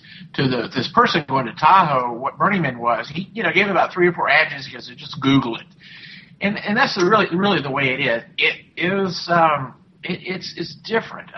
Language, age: English, 50-69